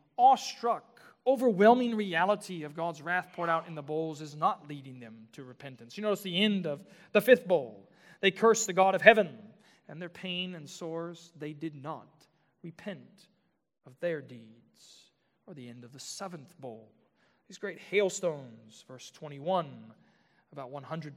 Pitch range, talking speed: 140-190 Hz, 160 wpm